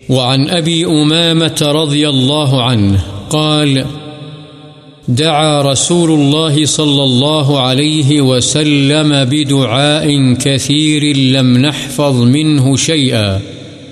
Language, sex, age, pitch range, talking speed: Urdu, male, 50-69, 135-155 Hz, 85 wpm